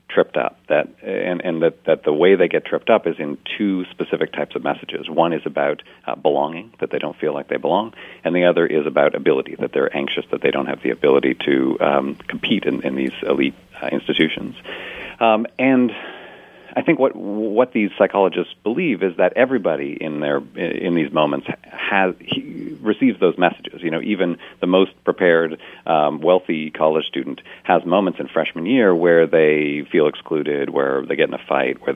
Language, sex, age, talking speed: English, male, 40-59, 200 wpm